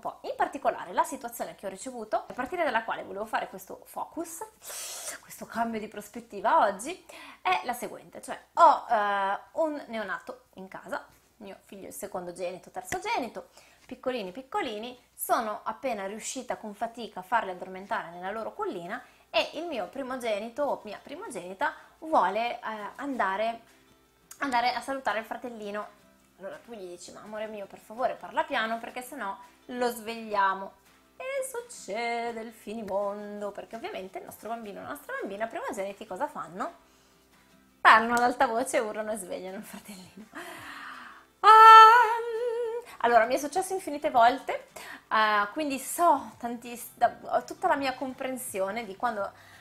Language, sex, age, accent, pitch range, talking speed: Italian, female, 20-39, native, 210-295 Hz, 150 wpm